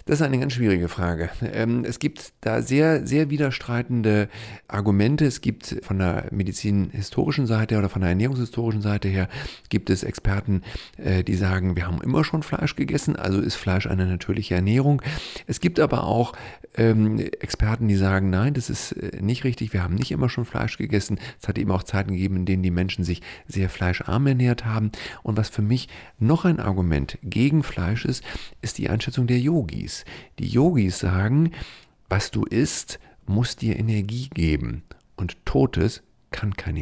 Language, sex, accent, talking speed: German, male, German, 170 wpm